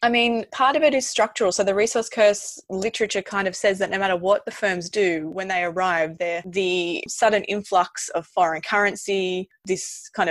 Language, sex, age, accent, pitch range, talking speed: English, female, 20-39, Australian, 170-205 Hz, 200 wpm